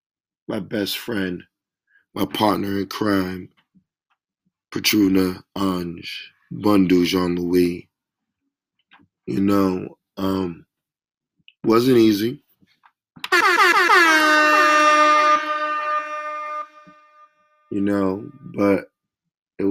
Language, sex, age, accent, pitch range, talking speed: English, male, 20-39, American, 95-105 Hz, 60 wpm